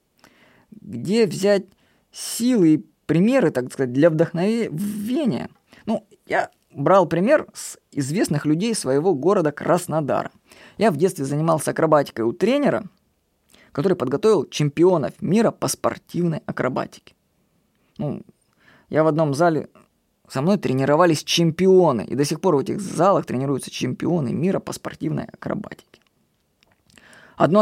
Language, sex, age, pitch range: Russian, female, 20-39, 145-195 Hz